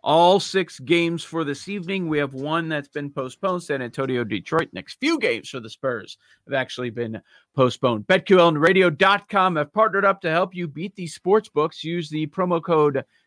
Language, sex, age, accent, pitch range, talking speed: English, male, 40-59, American, 150-190 Hz, 190 wpm